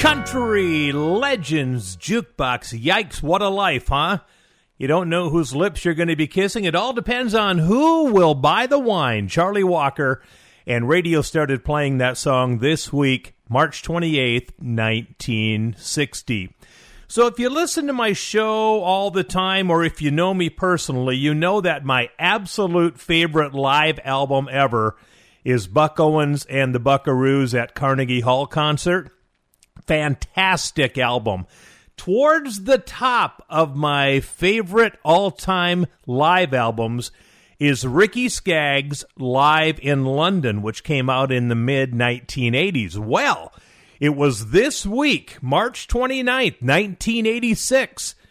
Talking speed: 130 wpm